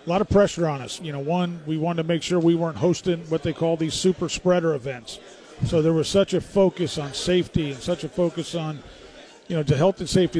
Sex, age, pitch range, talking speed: male, 40-59, 150-170 Hz, 250 wpm